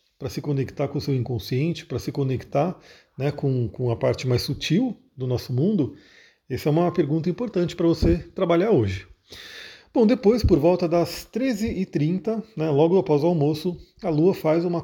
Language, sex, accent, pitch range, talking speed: Portuguese, male, Brazilian, 135-175 Hz, 175 wpm